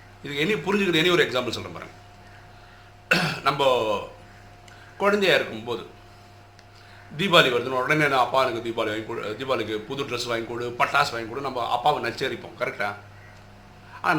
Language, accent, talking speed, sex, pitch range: Tamil, native, 115 wpm, male, 100-140 Hz